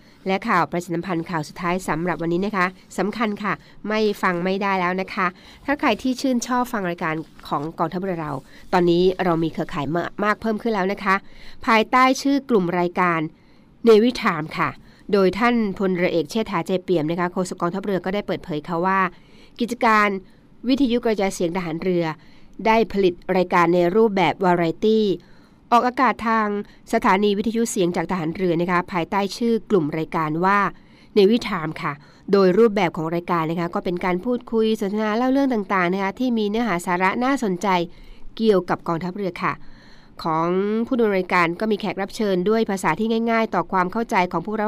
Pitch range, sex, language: 175-215 Hz, female, Thai